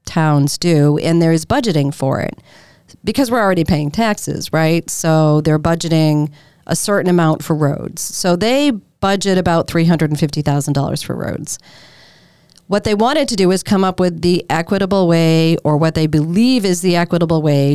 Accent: American